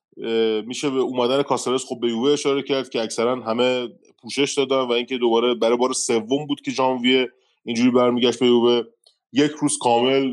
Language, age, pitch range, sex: Persian, 20-39, 115-140 Hz, male